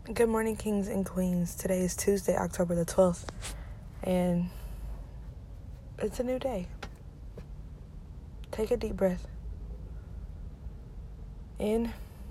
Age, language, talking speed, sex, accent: 20-39, English, 100 wpm, female, American